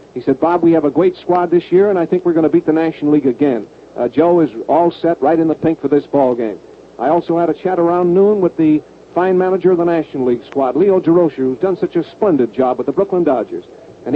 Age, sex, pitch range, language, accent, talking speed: 60-79, male, 155-190 Hz, English, American, 265 wpm